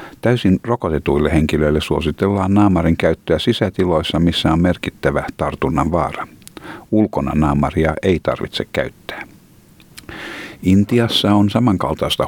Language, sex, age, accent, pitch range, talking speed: Finnish, male, 50-69, native, 75-95 Hz, 100 wpm